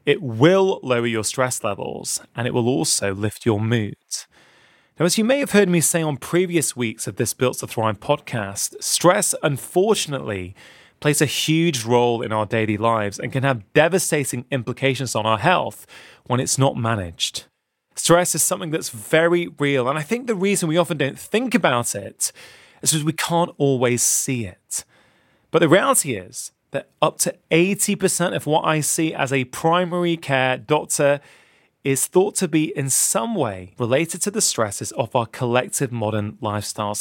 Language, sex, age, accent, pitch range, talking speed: English, male, 20-39, British, 120-170 Hz, 175 wpm